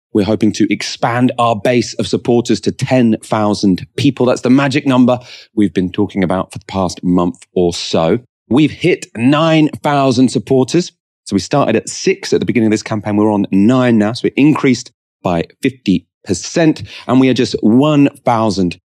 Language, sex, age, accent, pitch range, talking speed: English, male, 30-49, British, 100-135 Hz, 180 wpm